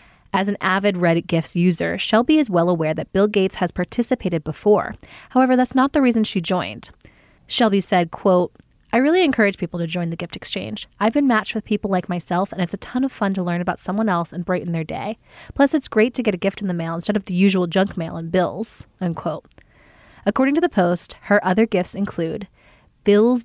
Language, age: English, 20-39